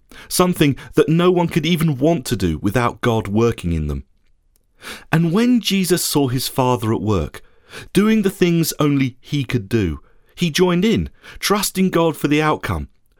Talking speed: 170 wpm